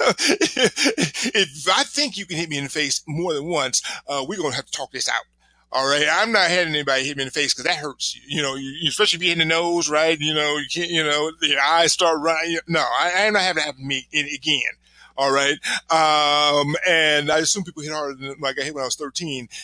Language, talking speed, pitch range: English, 270 wpm, 140-180 Hz